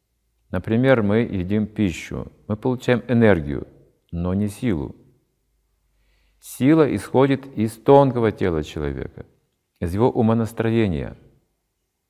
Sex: male